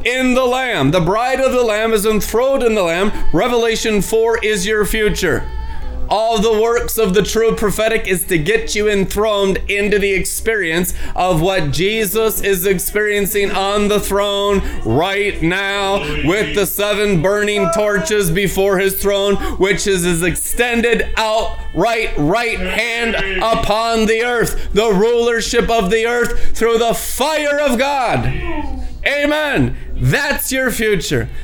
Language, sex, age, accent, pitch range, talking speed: English, male, 30-49, American, 155-215 Hz, 145 wpm